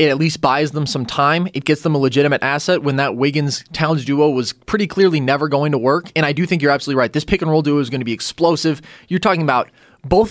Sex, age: male, 20-39